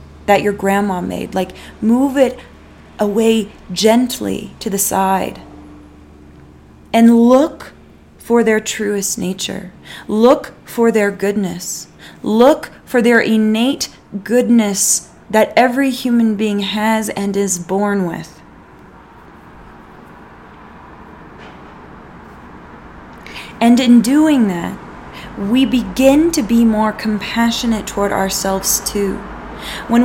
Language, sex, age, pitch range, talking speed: English, female, 20-39, 195-235 Hz, 100 wpm